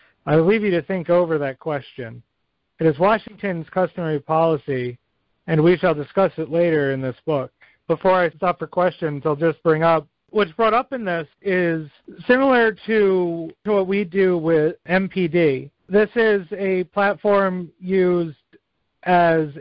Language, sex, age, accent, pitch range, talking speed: English, male, 40-59, American, 160-205 Hz, 155 wpm